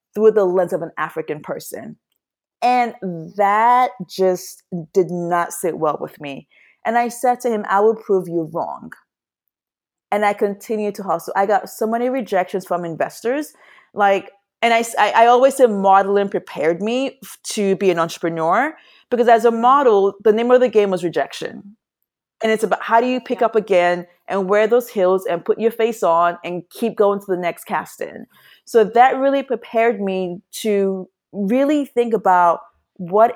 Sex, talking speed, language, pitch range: female, 175 wpm, English, 175-230 Hz